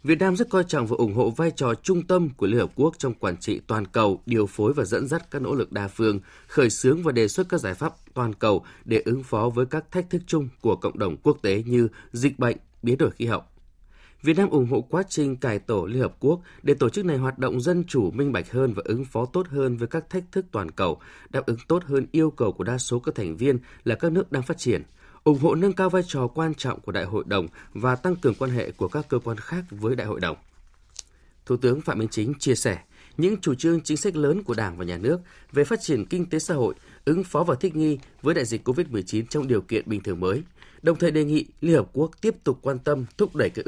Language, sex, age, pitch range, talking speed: Vietnamese, male, 20-39, 115-160 Hz, 265 wpm